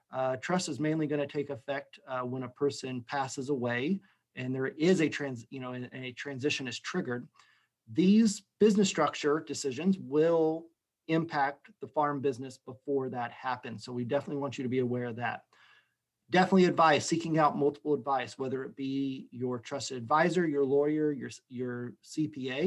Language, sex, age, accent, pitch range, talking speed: English, male, 40-59, American, 135-180 Hz, 170 wpm